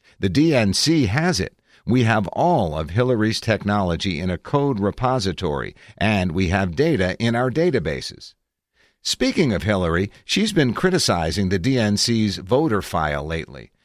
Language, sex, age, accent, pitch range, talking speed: English, male, 50-69, American, 90-130 Hz, 140 wpm